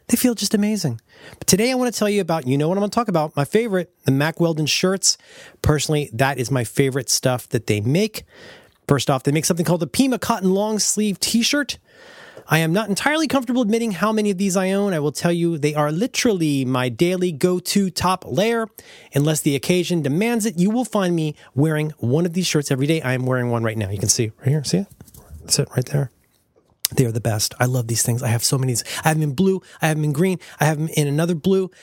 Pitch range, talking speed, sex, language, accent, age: 145-210 Hz, 250 wpm, male, English, American, 30-49